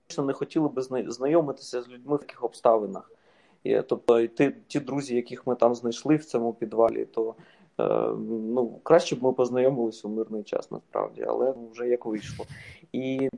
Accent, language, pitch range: native, Ukrainian, 120-155 Hz